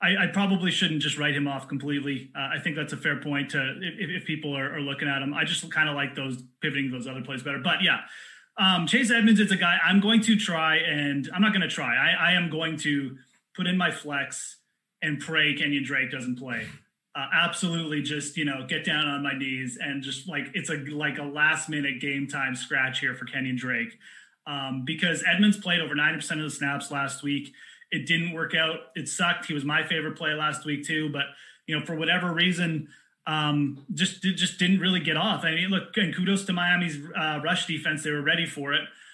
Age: 30-49